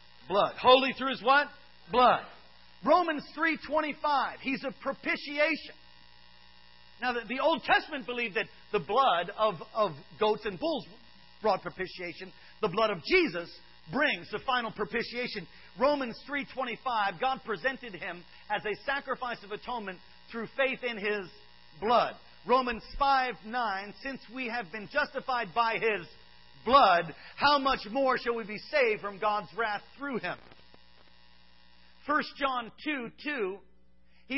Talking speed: 135 wpm